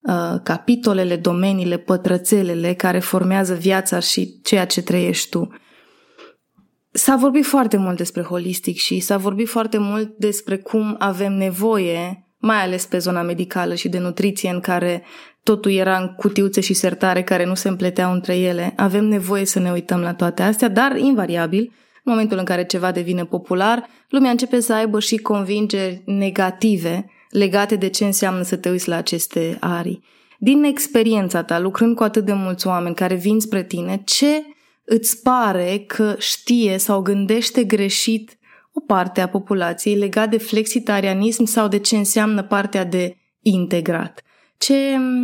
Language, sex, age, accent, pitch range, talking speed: Romanian, female, 20-39, native, 185-225 Hz, 155 wpm